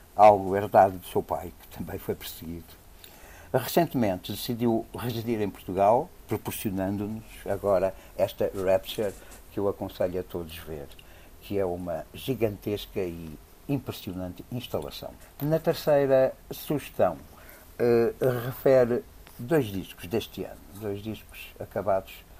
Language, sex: Portuguese, male